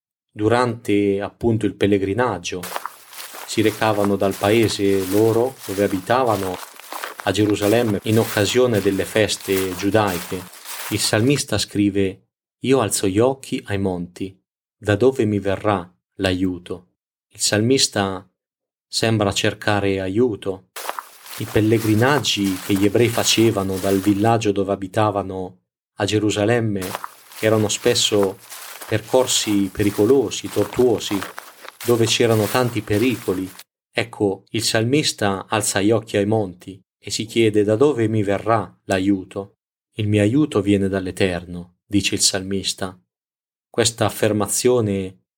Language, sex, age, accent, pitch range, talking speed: Italian, male, 30-49, native, 95-110 Hz, 110 wpm